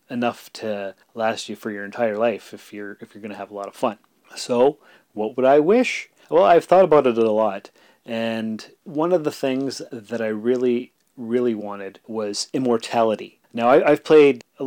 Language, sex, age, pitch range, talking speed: English, male, 30-49, 105-125 Hz, 190 wpm